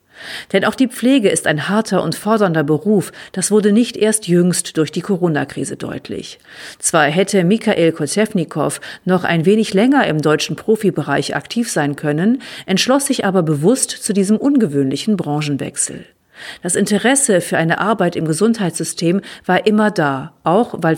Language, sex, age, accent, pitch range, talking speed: German, female, 50-69, German, 155-215 Hz, 150 wpm